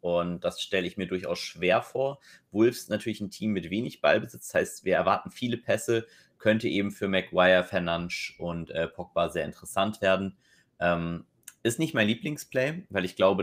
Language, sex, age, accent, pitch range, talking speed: German, male, 30-49, German, 90-110 Hz, 175 wpm